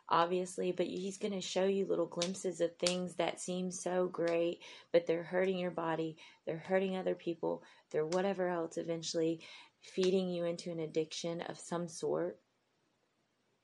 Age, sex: 30-49, female